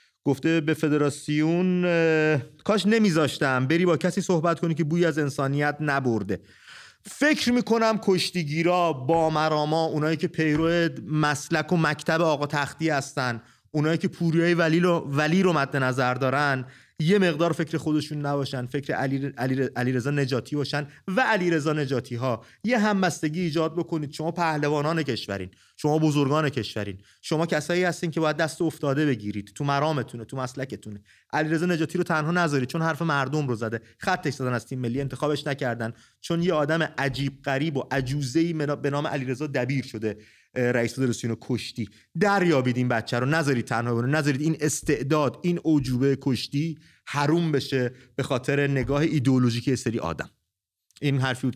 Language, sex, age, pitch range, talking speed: English, male, 30-49, 130-165 Hz, 155 wpm